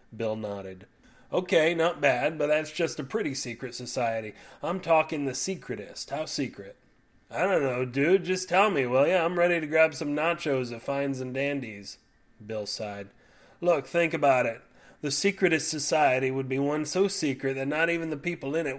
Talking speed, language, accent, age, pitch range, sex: 185 wpm, English, American, 30-49, 120-175 Hz, male